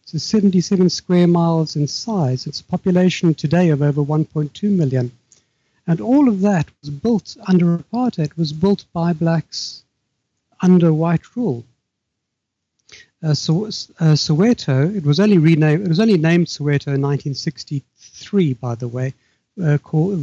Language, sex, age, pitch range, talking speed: English, male, 60-79, 140-180 Hz, 140 wpm